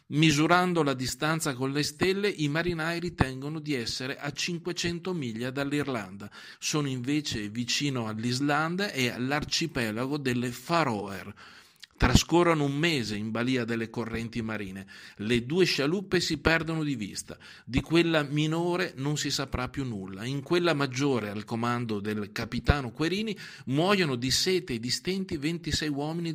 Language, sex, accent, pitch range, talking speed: Italian, male, native, 120-160 Hz, 140 wpm